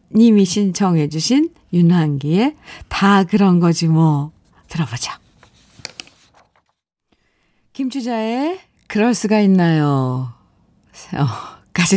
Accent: native